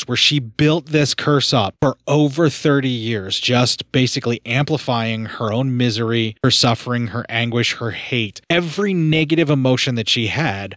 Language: English